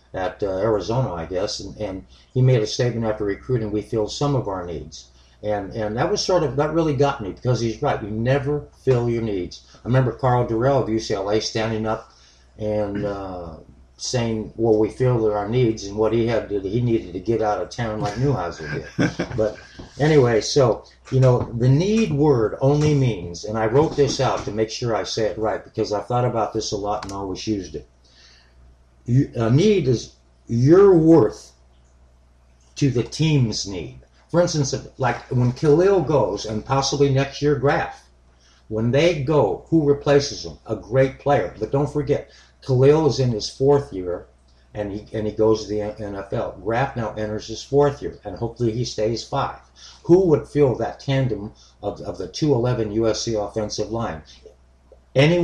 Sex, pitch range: male, 105-140 Hz